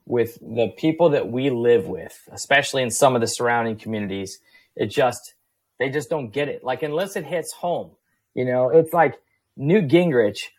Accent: American